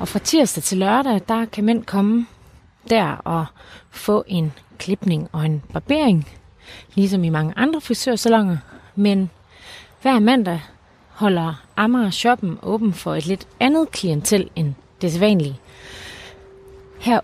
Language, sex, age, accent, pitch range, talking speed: Danish, female, 30-49, native, 165-225 Hz, 130 wpm